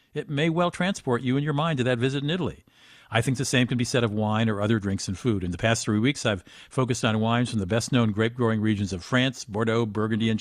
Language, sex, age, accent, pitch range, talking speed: English, male, 50-69, American, 110-145 Hz, 265 wpm